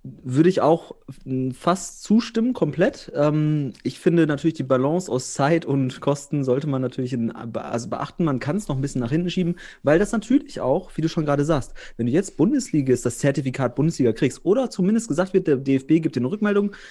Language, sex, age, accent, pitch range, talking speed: German, male, 30-49, German, 120-165 Hz, 200 wpm